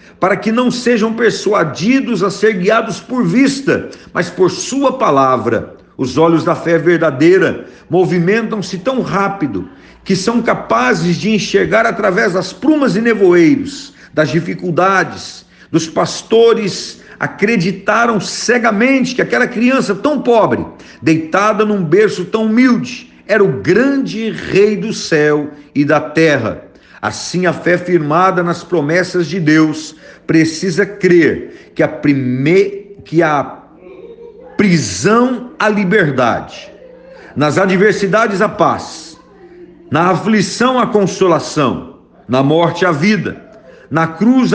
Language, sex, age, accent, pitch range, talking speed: Portuguese, male, 50-69, Brazilian, 165-230 Hz, 115 wpm